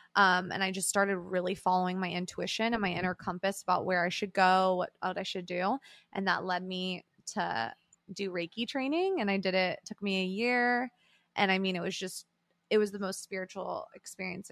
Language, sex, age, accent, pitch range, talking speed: English, female, 20-39, American, 185-215 Hz, 215 wpm